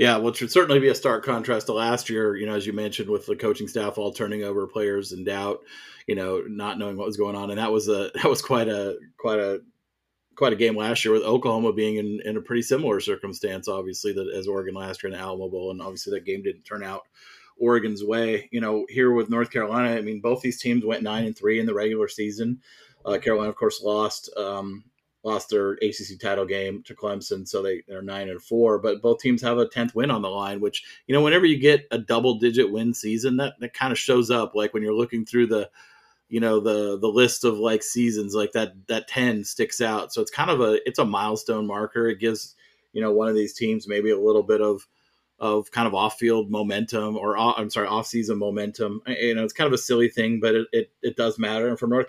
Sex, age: male, 30-49